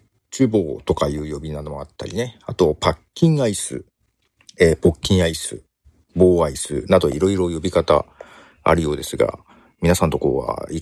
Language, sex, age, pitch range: Japanese, male, 50-69, 80-135 Hz